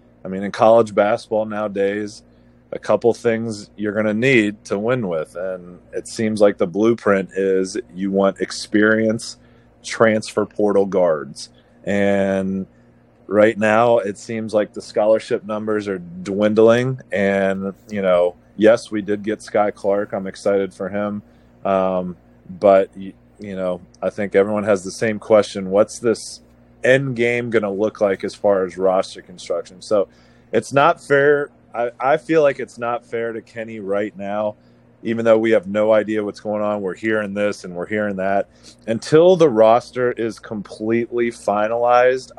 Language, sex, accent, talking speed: English, male, American, 160 wpm